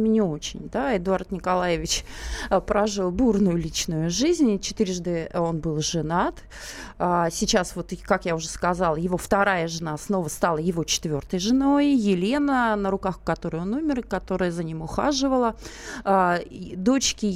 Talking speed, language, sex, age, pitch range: 135 wpm, Russian, female, 30-49, 175-225 Hz